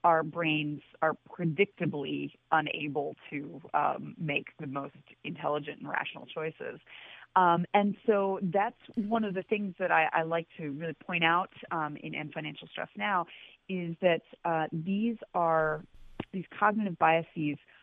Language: English